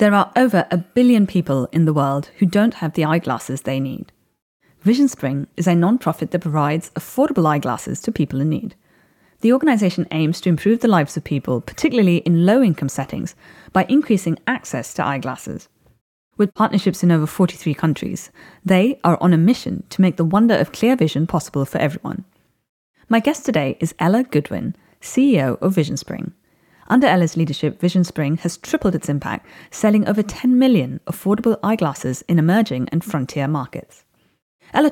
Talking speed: 165 wpm